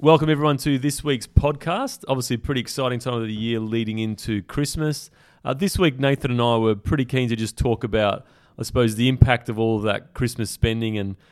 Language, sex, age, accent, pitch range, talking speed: English, male, 30-49, Australian, 100-125 Hz, 215 wpm